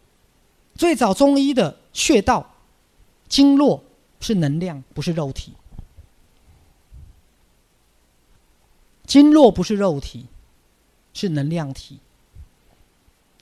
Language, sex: Chinese, male